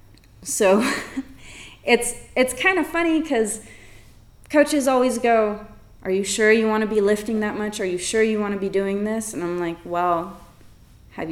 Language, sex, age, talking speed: English, female, 20-39, 180 wpm